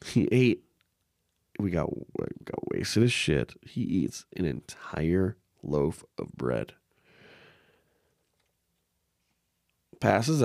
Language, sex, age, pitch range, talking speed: English, male, 20-39, 90-120 Hz, 100 wpm